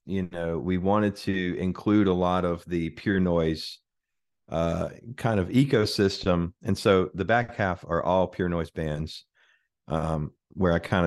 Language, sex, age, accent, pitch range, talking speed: English, male, 30-49, American, 85-100 Hz, 165 wpm